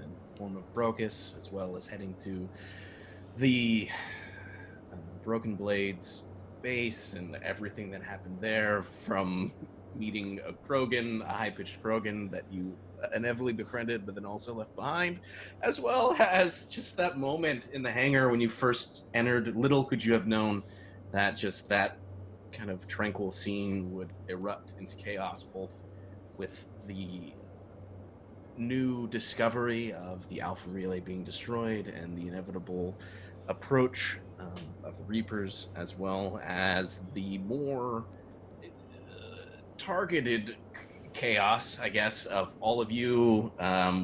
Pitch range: 95-115 Hz